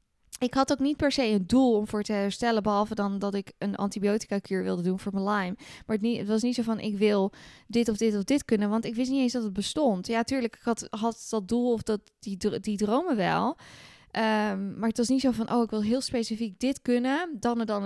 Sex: female